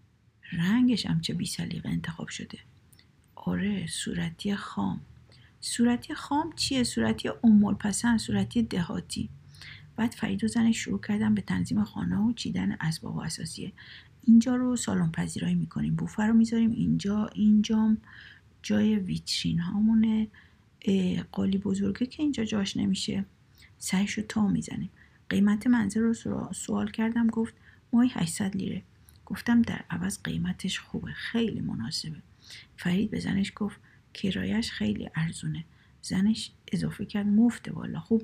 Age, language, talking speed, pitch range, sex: 50-69, Persian, 125 wpm, 190-225 Hz, female